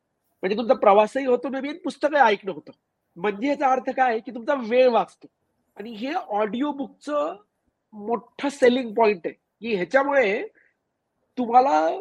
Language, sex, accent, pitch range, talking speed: Marathi, male, native, 200-260 Hz, 125 wpm